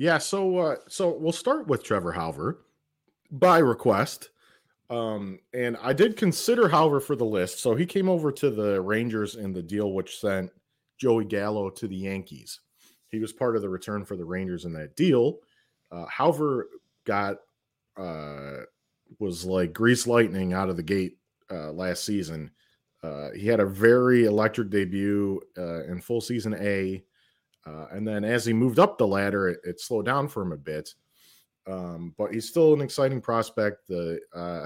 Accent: American